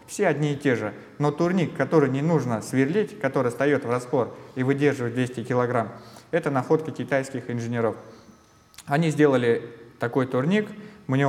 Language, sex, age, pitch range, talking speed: Russian, male, 20-39, 125-155 Hz, 150 wpm